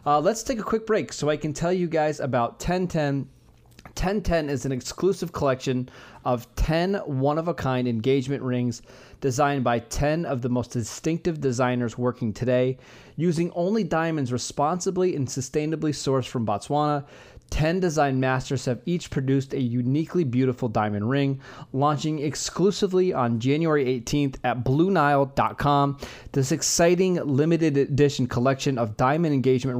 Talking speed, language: 140 wpm, English